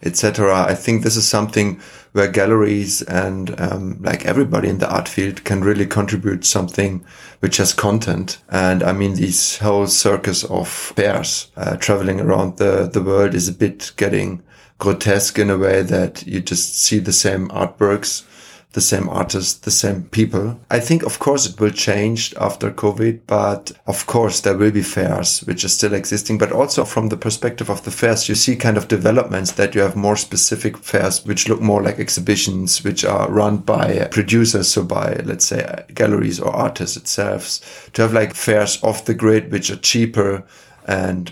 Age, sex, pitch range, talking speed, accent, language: 30-49, male, 95-110 Hz, 185 wpm, German, English